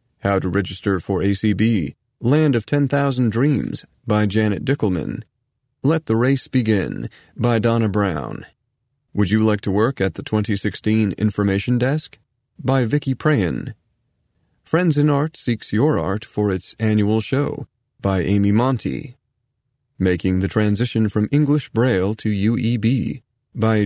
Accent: American